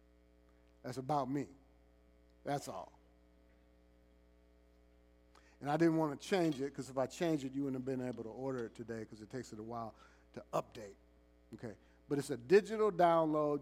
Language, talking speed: English, 175 wpm